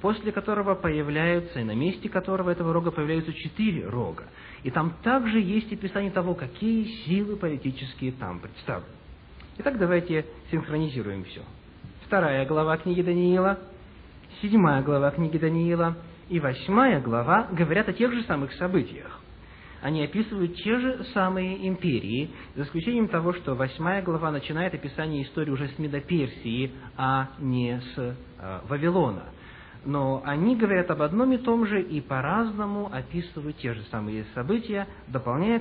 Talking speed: 140 wpm